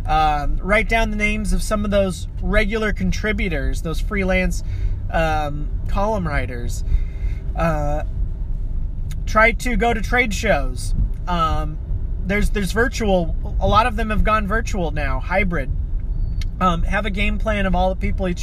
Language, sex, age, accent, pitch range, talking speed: English, male, 30-49, American, 85-100 Hz, 150 wpm